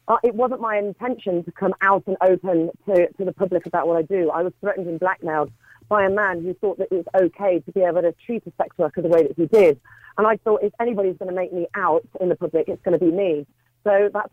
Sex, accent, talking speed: female, British, 270 wpm